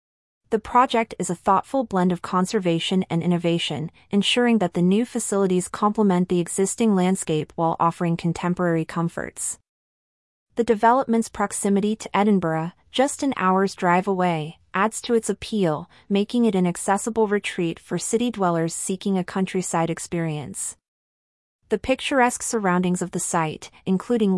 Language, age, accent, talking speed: English, 30-49, American, 140 wpm